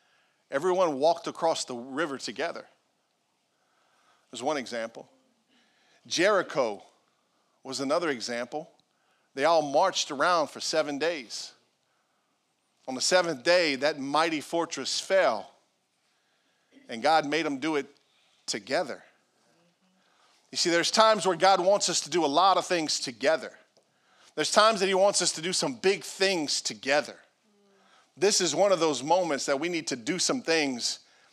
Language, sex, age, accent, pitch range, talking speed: English, male, 40-59, American, 165-215 Hz, 145 wpm